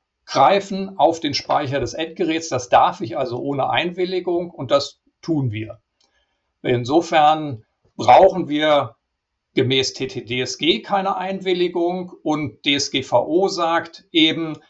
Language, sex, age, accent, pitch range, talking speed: German, male, 50-69, German, 125-165 Hz, 110 wpm